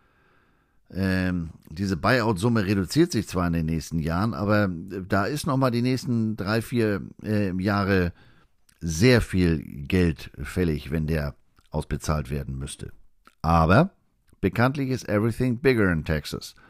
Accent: German